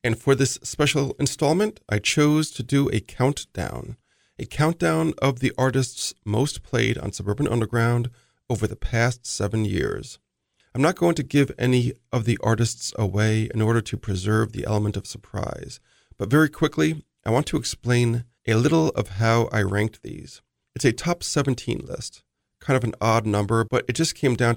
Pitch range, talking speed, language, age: 110-135 Hz, 180 wpm, English, 40-59